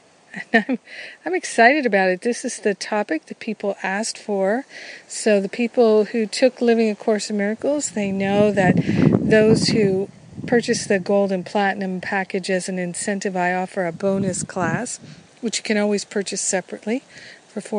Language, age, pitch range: English, 50-69, 185-225 Hz